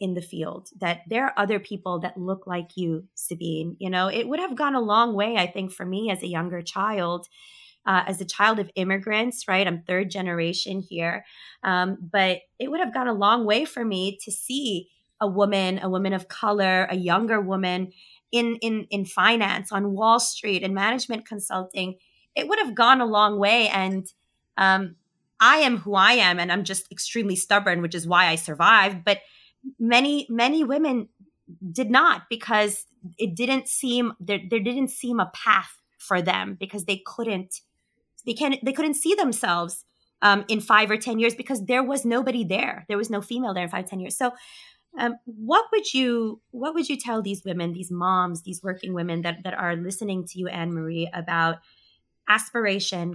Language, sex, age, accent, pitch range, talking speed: English, female, 20-39, American, 180-235 Hz, 190 wpm